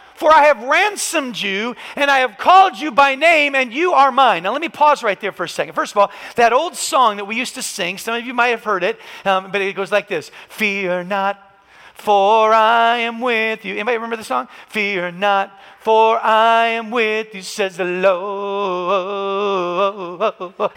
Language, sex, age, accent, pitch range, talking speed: English, male, 40-59, American, 175-230 Hz, 200 wpm